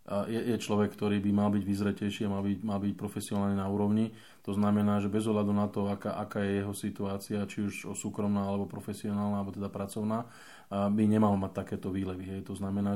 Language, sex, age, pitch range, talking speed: Slovak, male, 20-39, 100-105 Hz, 200 wpm